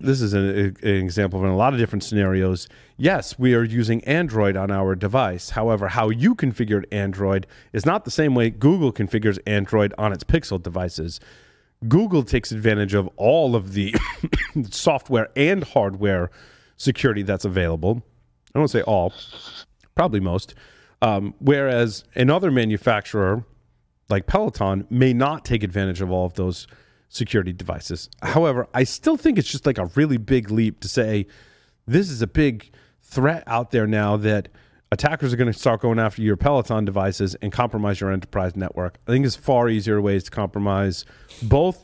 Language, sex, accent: English, male, American